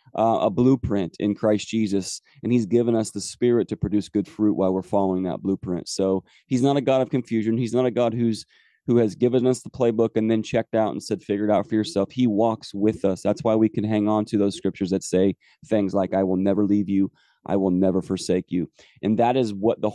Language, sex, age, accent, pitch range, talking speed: English, male, 30-49, American, 100-115 Hz, 245 wpm